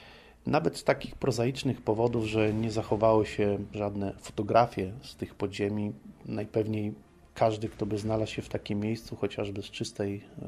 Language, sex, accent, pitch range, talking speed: Polish, male, native, 100-120 Hz, 150 wpm